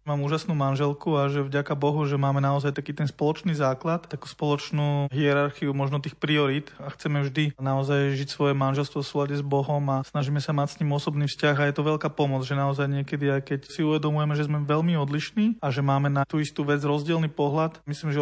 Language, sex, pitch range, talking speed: Slovak, male, 140-155 Hz, 215 wpm